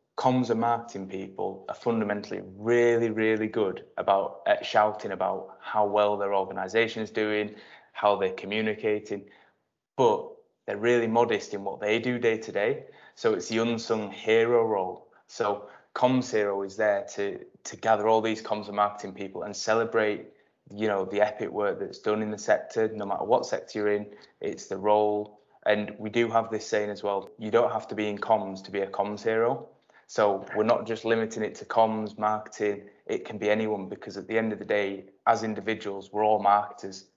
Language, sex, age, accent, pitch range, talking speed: English, male, 20-39, British, 100-110 Hz, 190 wpm